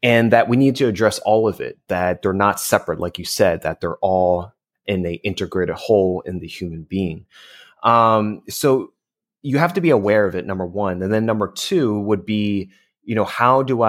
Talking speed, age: 205 wpm, 30-49